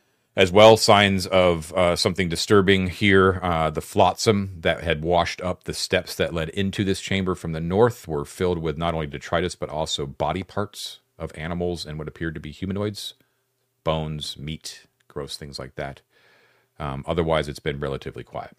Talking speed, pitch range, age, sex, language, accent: 180 wpm, 75-95 Hz, 40-59, male, English, American